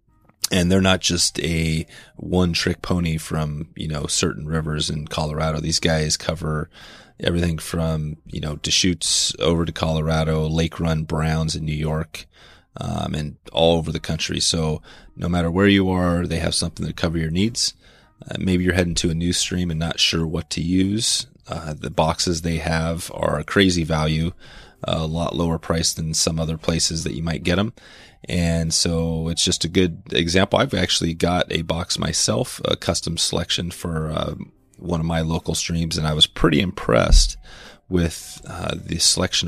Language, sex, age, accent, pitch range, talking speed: English, male, 30-49, American, 80-90 Hz, 180 wpm